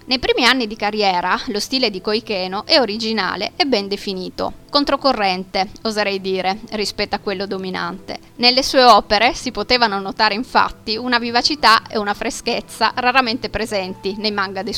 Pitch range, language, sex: 200-250 Hz, Italian, female